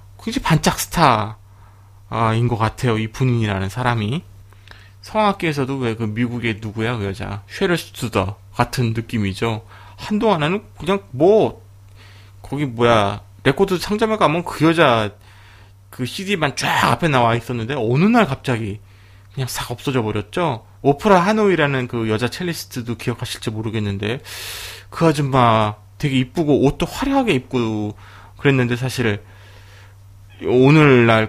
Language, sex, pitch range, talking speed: English, male, 100-145 Hz, 110 wpm